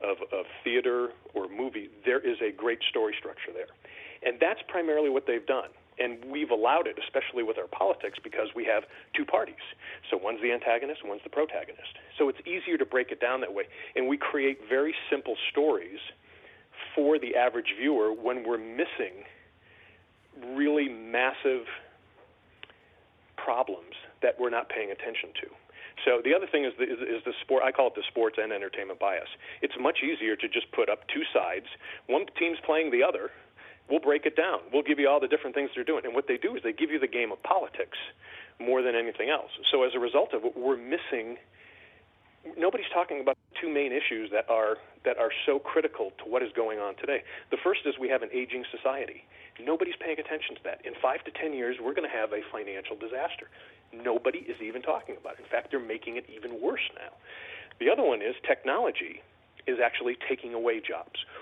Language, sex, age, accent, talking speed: English, male, 40-59, American, 200 wpm